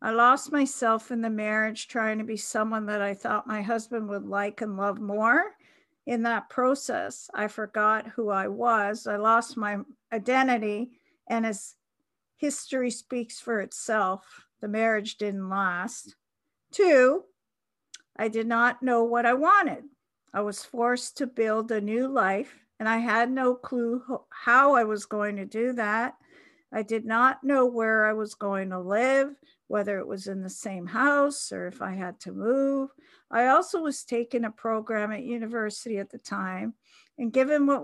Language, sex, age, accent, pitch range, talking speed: English, female, 50-69, American, 215-260 Hz, 170 wpm